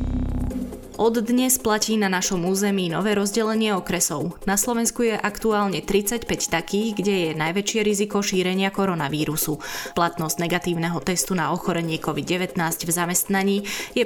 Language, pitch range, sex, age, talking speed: Slovak, 165-205 Hz, female, 20-39, 130 wpm